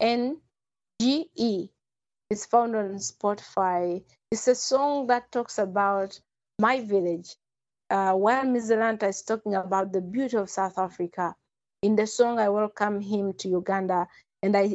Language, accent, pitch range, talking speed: English, South African, 195-235 Hz, 135 wpm